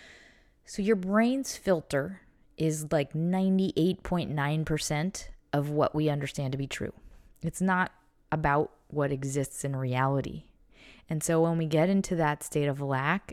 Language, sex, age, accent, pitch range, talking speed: English, female, 20-39, American, 150-190 Hz, 140 wpm